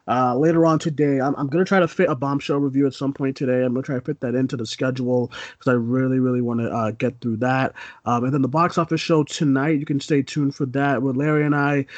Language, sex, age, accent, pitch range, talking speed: English, male, 30-49, American, 125-150 Hz, 270 wpm